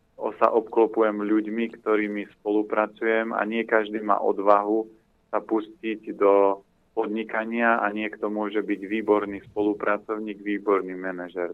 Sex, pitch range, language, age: male, 105-120 Hz, Slovak, 30-49